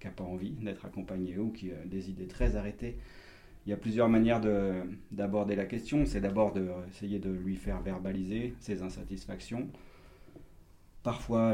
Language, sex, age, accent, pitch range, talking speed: French, male, 30-49, French, 95-110 Hz, 170 wpm